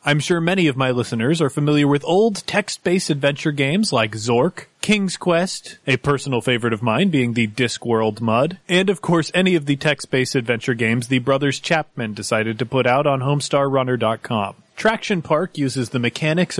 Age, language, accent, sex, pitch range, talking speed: 30-49, English, American, male, 125-185 Hz, 175 wpm